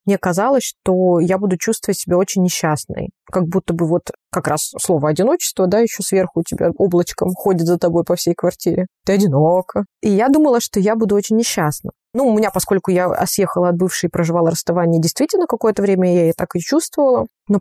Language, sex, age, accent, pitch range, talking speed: Russian, female, 20-39, native, 180-210 Hz, 200 wpm